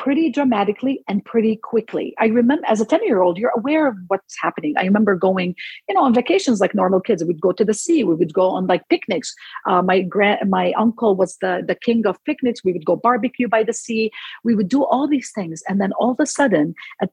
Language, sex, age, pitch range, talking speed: English, female, 50-69, 180-235 Hz, 245 wpm